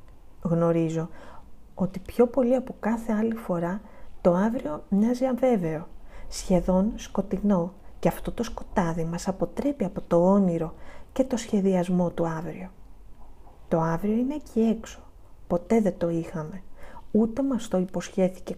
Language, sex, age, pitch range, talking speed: Greek, female, 30-49, 175-230 Hz, 130 wpm